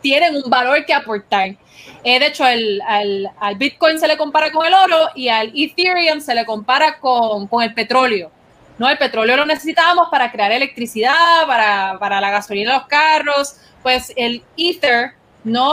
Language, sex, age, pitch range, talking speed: Spanish, female, 20-39, 225-290 Hz, 175 wpm